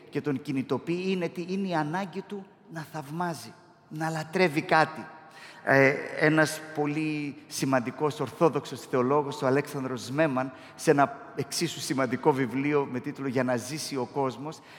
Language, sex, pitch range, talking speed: Greek, male, 145-185 Hz, 140 wpm